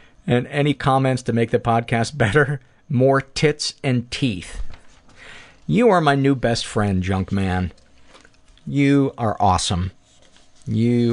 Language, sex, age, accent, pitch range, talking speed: English, male, 50-69, American, 100-130 Hz, 130 wpm